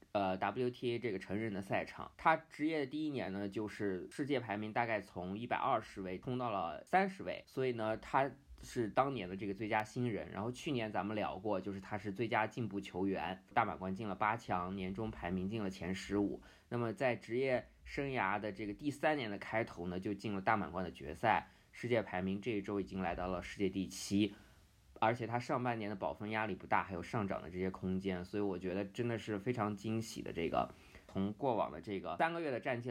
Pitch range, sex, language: 95-125 Hz, male, Chinese